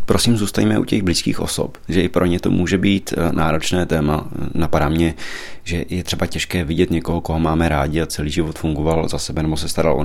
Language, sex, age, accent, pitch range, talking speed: Czech, male, 30-49, native, 80-95 Hz, 215 wpm